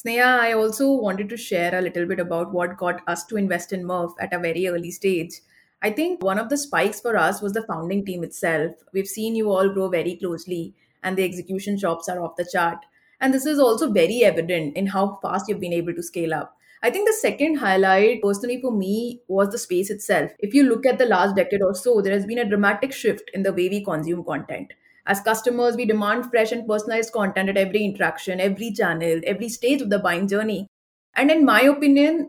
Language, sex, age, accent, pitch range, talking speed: English, female, 30-49, Indian, 185-245 Hz, 225 wpm